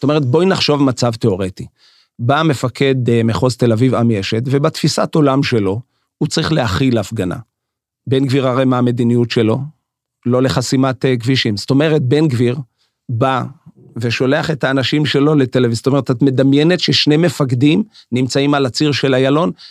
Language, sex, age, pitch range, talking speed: Hebrew, male, 40-59, 125-165 Hz, 155 wpm